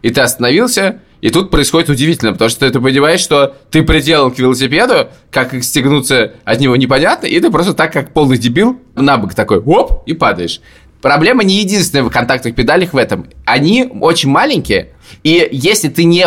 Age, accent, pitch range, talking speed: 20-39, native, 130-175 Hz, 185 wpm